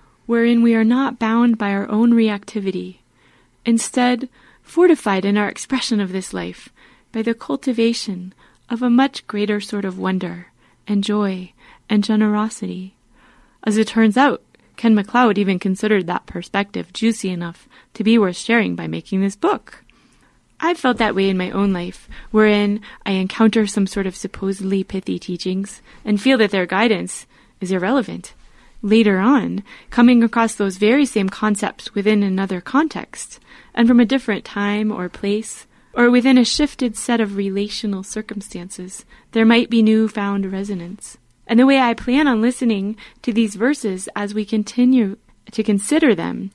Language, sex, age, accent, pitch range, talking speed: English, female, 20-39, American, 195-240 Hz, 160 wpm